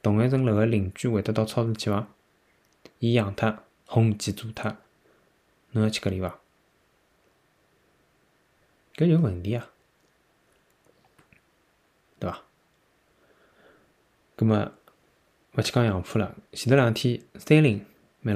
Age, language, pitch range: 20-39, Chinese, 100-130 Hz